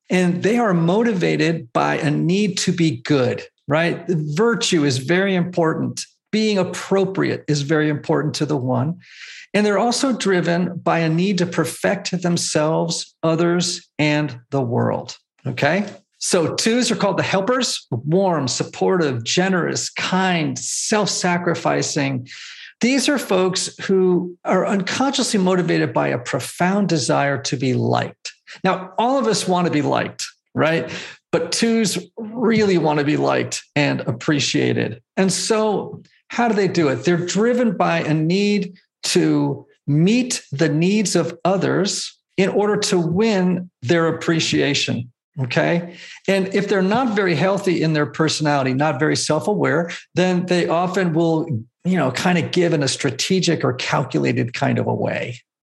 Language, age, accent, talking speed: English, 50-69, American, 145 wpm